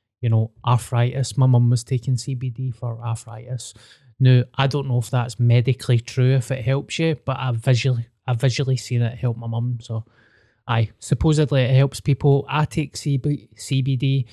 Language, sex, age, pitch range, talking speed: English, male, 20-39, 115-135 Hz, 175 wpm